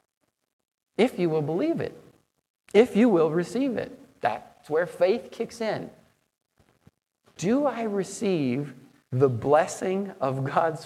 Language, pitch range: English, 150-220 Hz